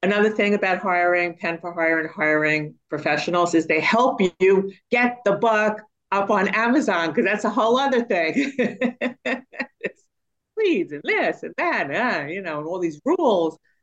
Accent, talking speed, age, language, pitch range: American, 175 wpm, 50-69, English, 155-200 Hz